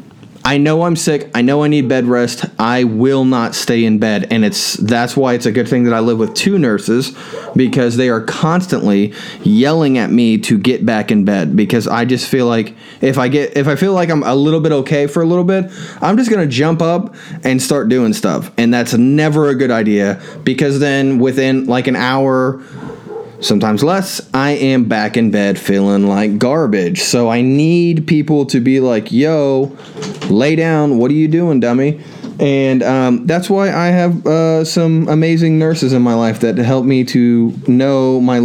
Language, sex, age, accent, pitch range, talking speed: English, male, 20-39, American, 120-160 Hz, 200 wpm